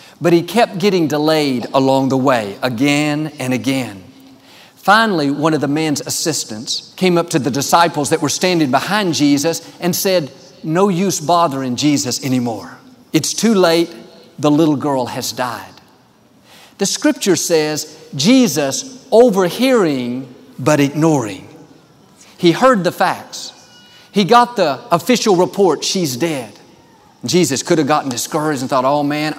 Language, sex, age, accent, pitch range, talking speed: English, male, 50-69, American, 145-180 Hz, 140 wpm